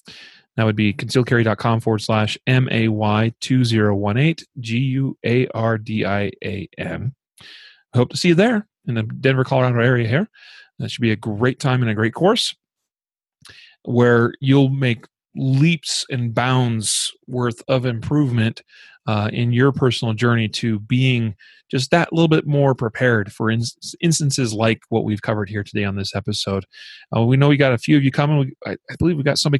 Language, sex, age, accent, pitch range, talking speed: English, male, 30-49, American, 115-150 Hz, 185 wpm